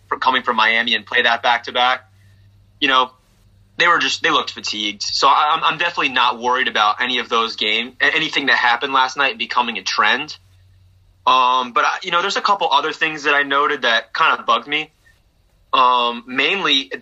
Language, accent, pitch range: English, American, 115-145 Hz